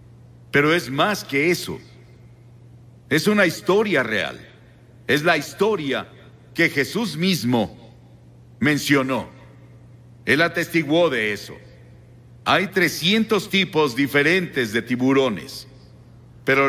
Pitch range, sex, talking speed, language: 120-160 Hz, male, 95 wpm, Spanish